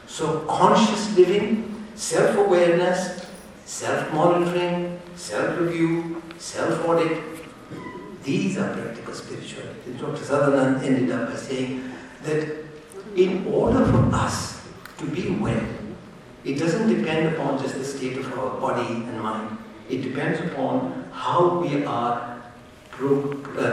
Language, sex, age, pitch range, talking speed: English, male, 60-79, 130-190 Hz, 115 wpm